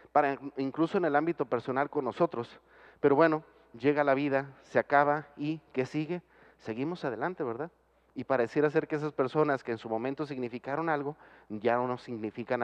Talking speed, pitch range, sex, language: 175 wpm, 120-150 Hz, male, Spanish